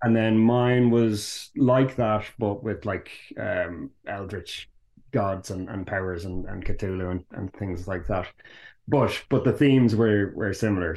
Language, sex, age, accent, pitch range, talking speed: English, male, 30-49, Irish, 95-115 Hz, 165 wpm